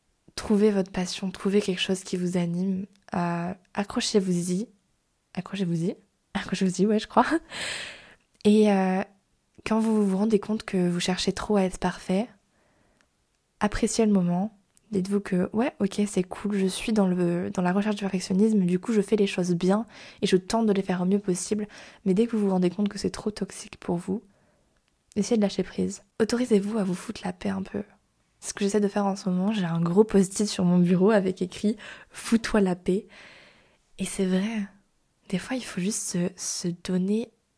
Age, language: 20-39, French